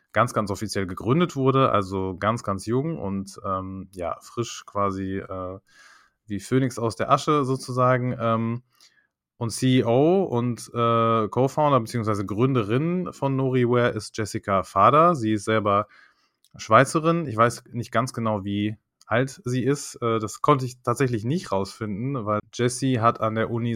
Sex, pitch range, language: male, 105-125 Hz, German